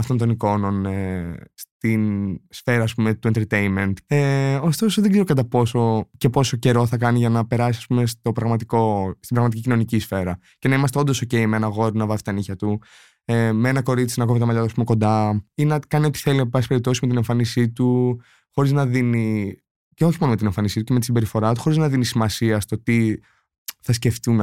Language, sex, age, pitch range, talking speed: Greek, male, 20-39, 110-135 Hz, 190 wpm